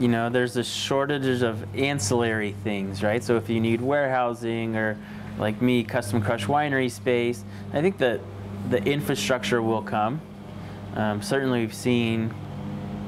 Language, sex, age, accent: English, male, 30-49, American